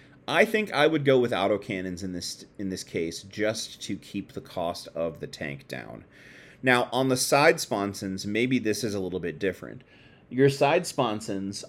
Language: English